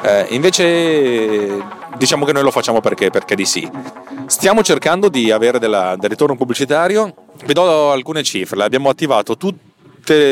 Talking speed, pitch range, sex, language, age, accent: 150 wpm, 105-145 Hz, male, Italian, 30-49, native